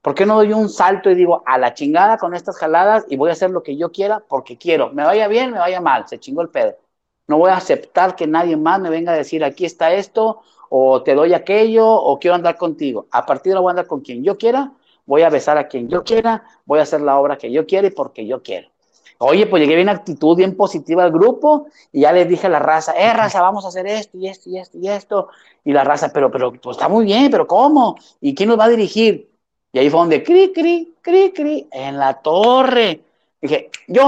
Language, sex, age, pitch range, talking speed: Spanish, male, 50-69, 155-220 Hz, 255 wpm